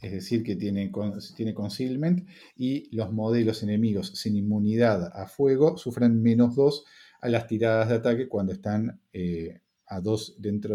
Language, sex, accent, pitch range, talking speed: Spanish, male, Argentinian, 100-125 Hz, 145 wpm